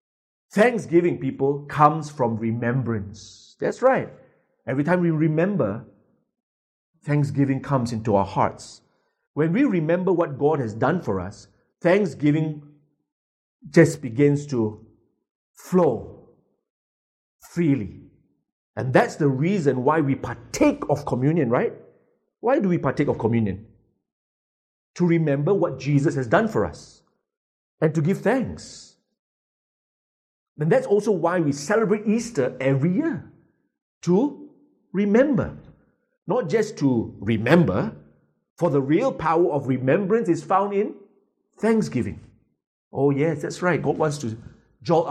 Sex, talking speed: male, 120 wpm